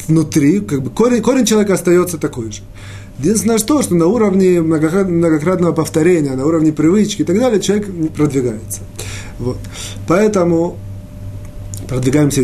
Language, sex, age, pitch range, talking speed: Russian, male, 20-39, 115-165 Hz, 130 wpm